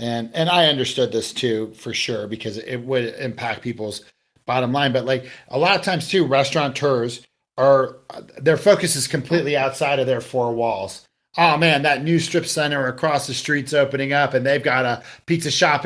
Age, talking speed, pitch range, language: 40-59, 190 wpm, 130-160 Hz, English